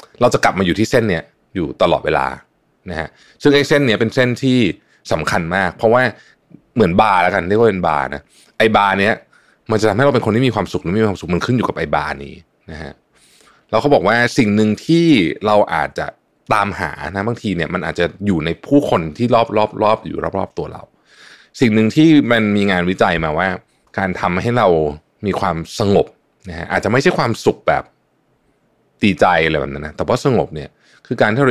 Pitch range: 90-125 Hz